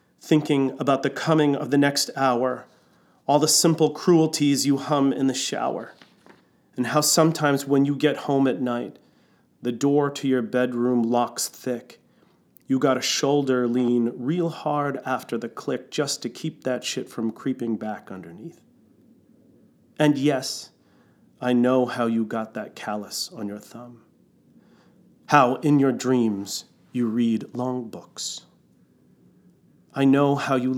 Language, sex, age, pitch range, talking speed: English, male, 40-59, 115-140 Hz, 150 wpm